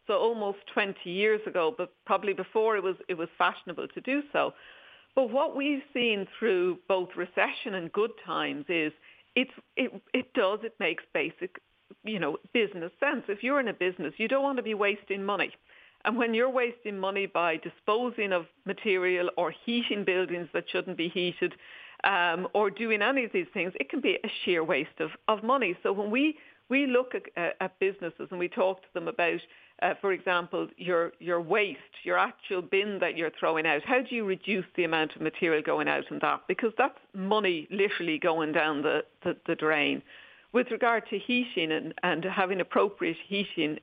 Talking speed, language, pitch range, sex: 190 wpm, English, 175-225 Hz, female